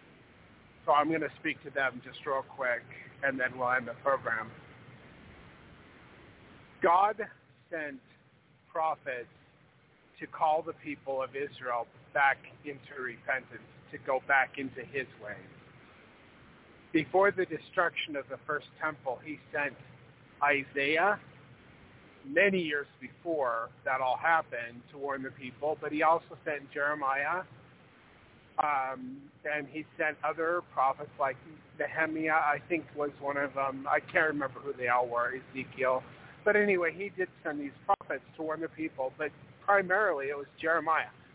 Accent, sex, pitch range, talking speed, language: American, male, 135-160 Hz, 140 wpm, English